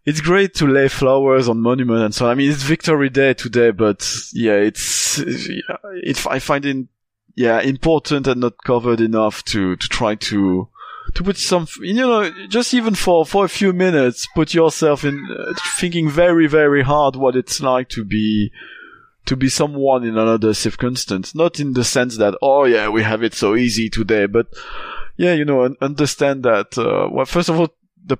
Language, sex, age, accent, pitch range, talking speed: English, male, 20-39, French, 115-160 Hz, 185 wpm